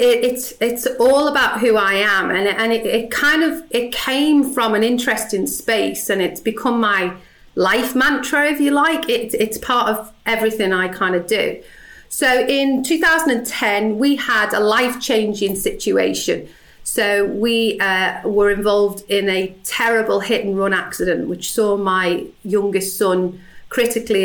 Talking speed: 160 wpm